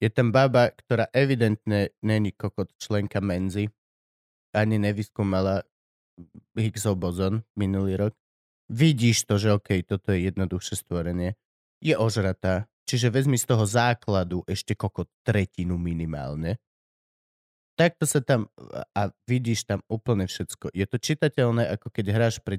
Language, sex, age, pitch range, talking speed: Slovak, male, 30-49, 100-135 Hz, 135 wpm